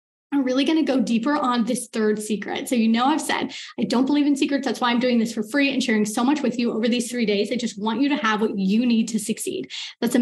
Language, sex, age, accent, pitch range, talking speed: English, female, 20-39, American, 235-300 Hz, 295 wpm